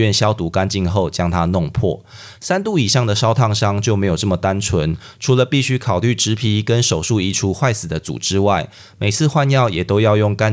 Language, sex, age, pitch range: Chinese, male, 20-39, 90-115 Hz